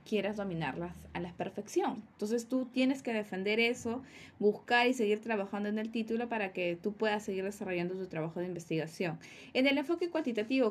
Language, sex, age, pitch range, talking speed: Spanish, female, 20-39, 200-255 Hz, 180 wpm